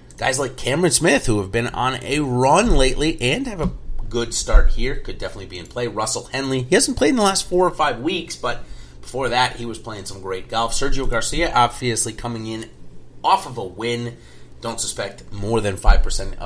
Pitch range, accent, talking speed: 100-135 Hz, American, 210 wpm